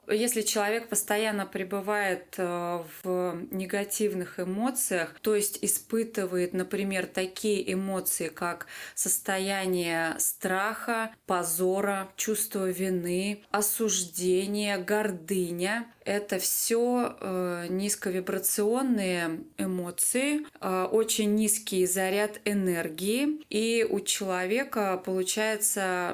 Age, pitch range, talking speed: 20-39, 185-215 Hz, 75 wpm